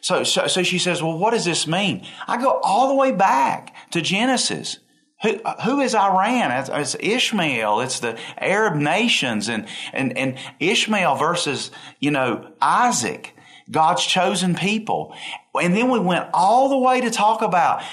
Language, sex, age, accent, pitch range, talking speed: English, male, 40-59, American, 145-215 Hz, 165 wpm